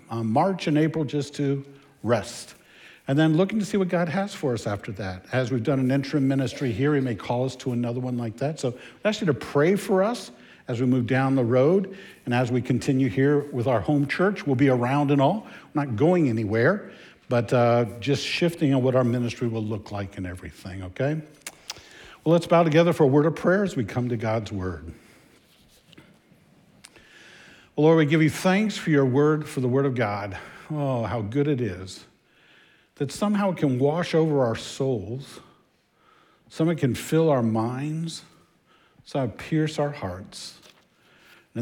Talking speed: 195 wpm